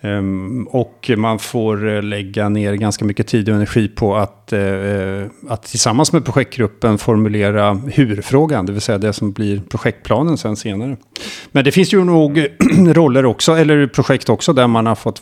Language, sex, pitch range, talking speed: Swedish, male, 105-125 Hz, 160 wpm